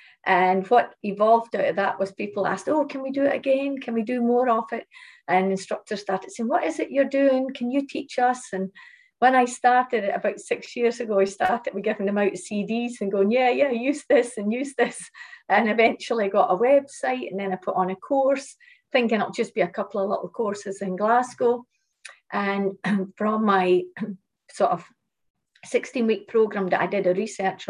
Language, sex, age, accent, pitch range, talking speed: English, female, 50-69, British, 190-245 Hz, 205 wpm